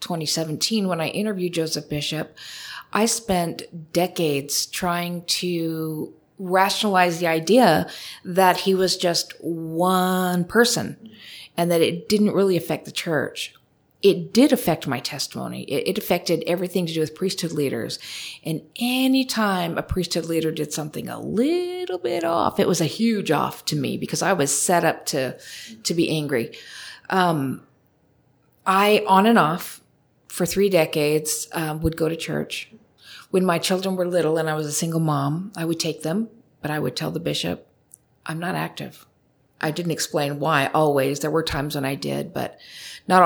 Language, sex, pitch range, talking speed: English, female, 155-185 Hz, 165 wpm